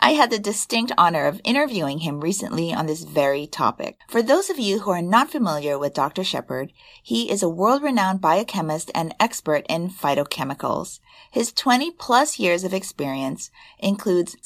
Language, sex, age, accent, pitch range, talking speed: English, female, 30-49, American, 155-220 Hz, 160 wpm